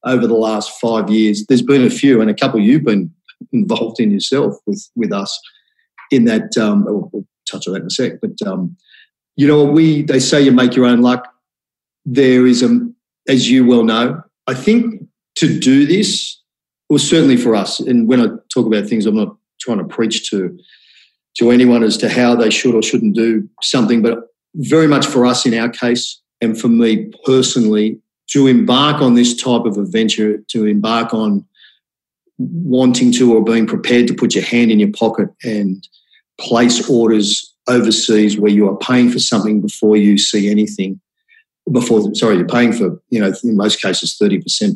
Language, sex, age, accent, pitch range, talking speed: English, male, 40-59, Australian, 110-155 Hz, 190 wpm